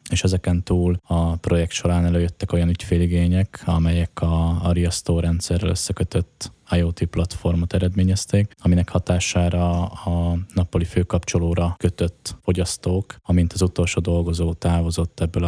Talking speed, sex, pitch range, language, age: 115 wpm, male, 85-95 Hz, Hungarian, 20-39